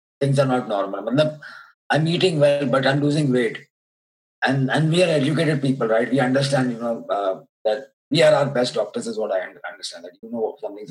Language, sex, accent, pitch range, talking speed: English, male, Indian, 110-145 Hz, 205 wpm